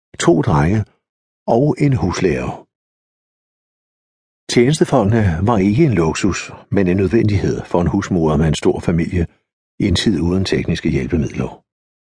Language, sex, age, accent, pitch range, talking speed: Danish, male, 60-79, native, 90-130 Hz, 130 wpm